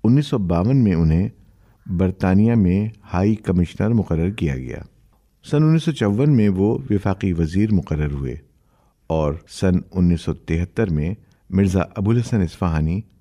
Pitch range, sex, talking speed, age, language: 85-115 Hz, male, 125 wpm, 50-69, Urdu